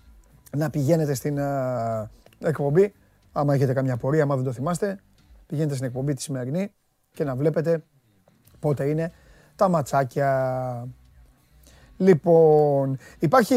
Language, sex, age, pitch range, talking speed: Greek, male, 30-49, 140-195 Hz, 110 wpm